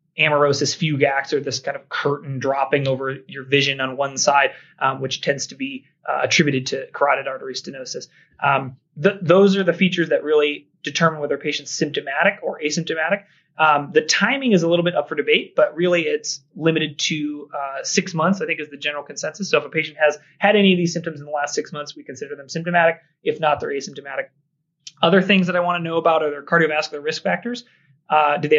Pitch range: 145-170 Hz